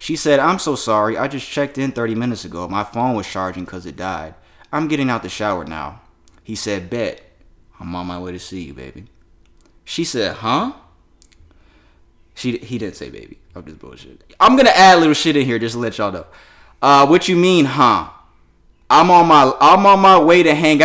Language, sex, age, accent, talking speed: English, male, 20-39, American, 215 wpm